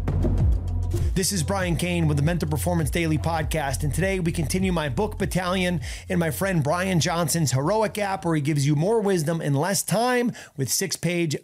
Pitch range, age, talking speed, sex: 135-185 Hz, 30-49, 185 wpm, male